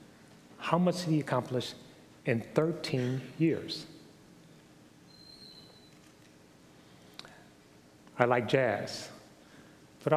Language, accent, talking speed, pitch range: English, American, 70 wpm, 115-155 Hz